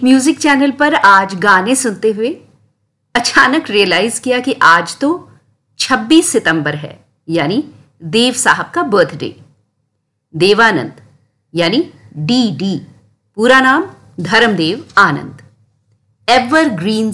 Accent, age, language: native, 50-69, Hindi